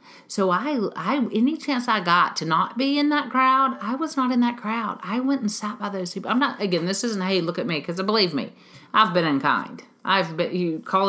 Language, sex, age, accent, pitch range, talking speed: English, female, 40-59, American, 140-210 Hz, 245 wpm